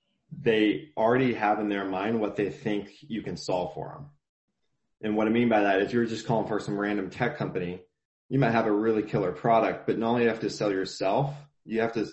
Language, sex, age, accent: English, male, 20-39, American